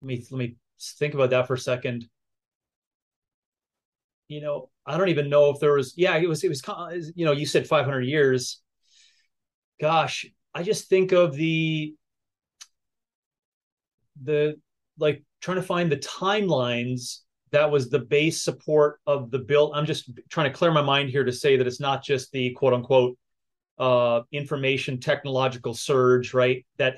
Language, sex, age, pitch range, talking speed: English, male, 30-49, 130-160 Hz, 165 wpm